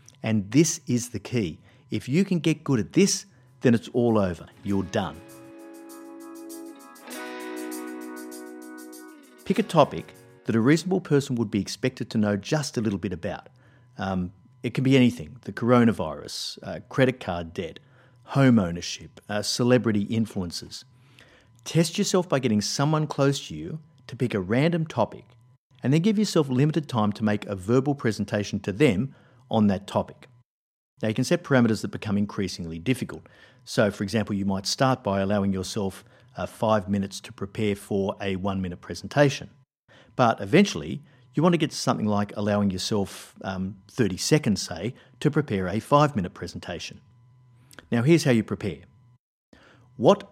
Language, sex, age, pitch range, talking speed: English, male, 50-69, 100-135 Hz, 160 wpm